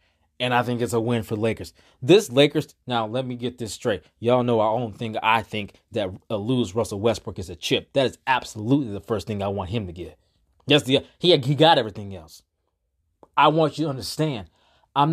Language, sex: English, male